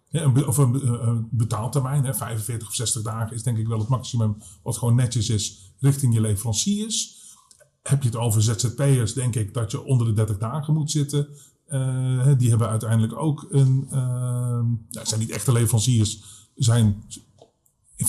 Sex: male